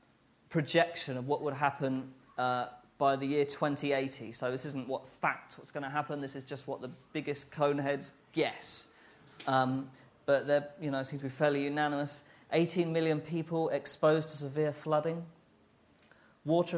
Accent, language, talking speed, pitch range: British, English, 165 wpm, 135-155 Hz